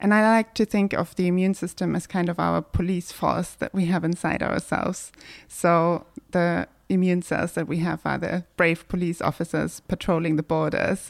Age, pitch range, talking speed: 20-39, 165-185 Hz, 190 wpm